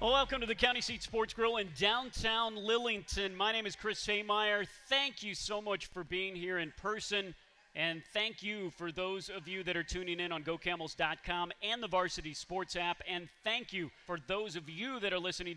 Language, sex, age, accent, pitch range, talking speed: English, male, 40-59, American, 165-205 Hz, 200 wpm